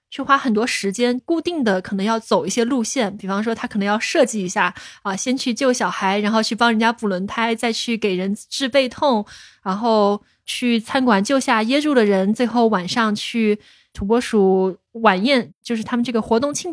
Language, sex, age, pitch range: Chinese, female, 20-39, 210-270 Hz